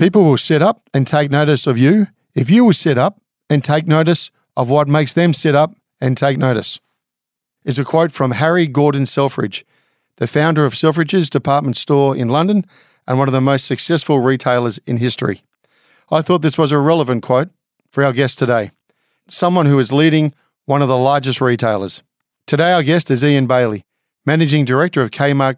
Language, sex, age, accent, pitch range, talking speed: English, male, 50-69, Australian, 135-160 Hz, 190 wpm